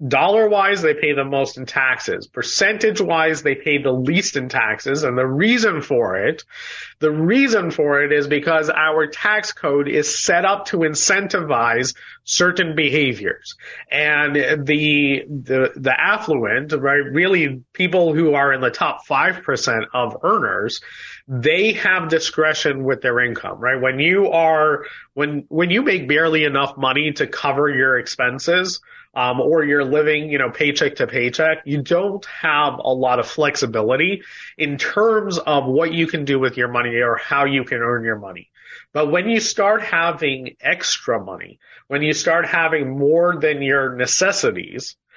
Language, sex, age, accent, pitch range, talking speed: English, male, 30-49, American, 140-180 Hz, 160 wpm